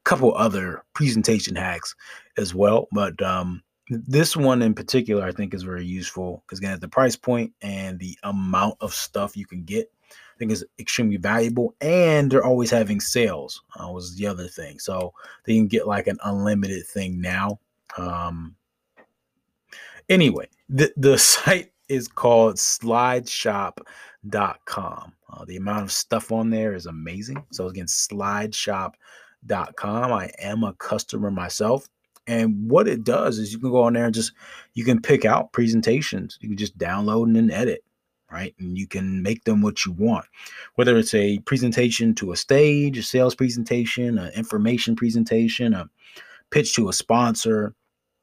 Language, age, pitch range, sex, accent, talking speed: English, 20-39, 95-120 Hz, male, American, 165 wpm